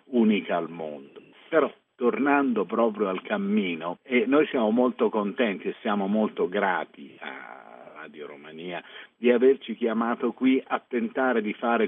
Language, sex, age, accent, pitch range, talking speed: Italian, male, 50-69, native, 100-145 Hz, 140 wpm